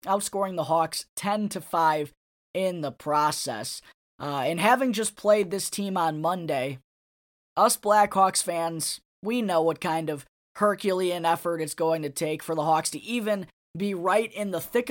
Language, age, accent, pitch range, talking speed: English, 20-39, American, 160-200 Hz, 160 wpm